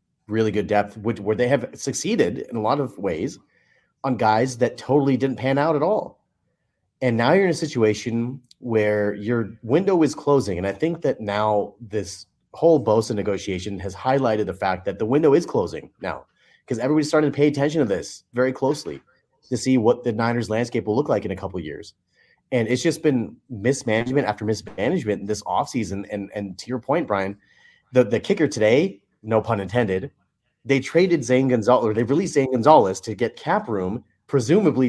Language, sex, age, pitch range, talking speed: English, male, 30-49, 110-145 Hz, 195 wpm